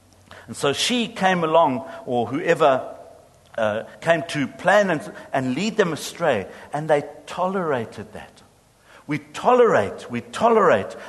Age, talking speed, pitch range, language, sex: 60-79, 130 wpm, 125-175 Hz, English, male